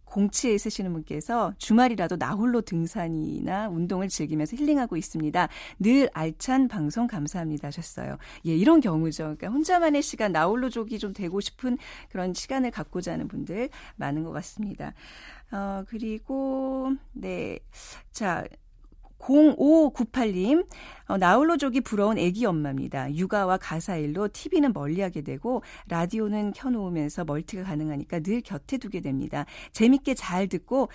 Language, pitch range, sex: Korean, 170-250 Hz, female